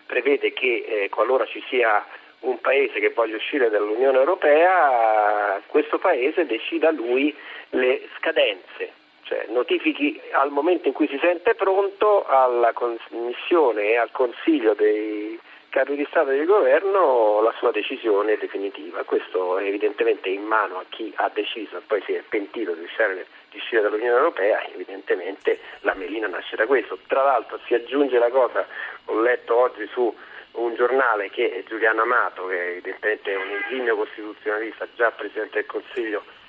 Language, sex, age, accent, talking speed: Italian, male, 40-59, native, 155 wpm